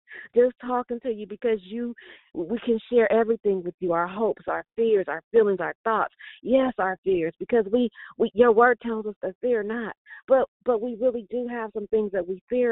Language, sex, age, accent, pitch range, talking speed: English, female, 40-59, American, 200-255 Hz, 210 wpm